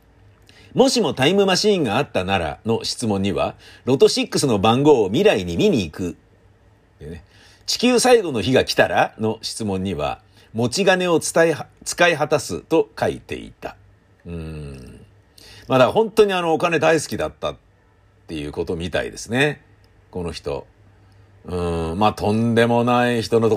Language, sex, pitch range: Japanese, male, 100-155 Hz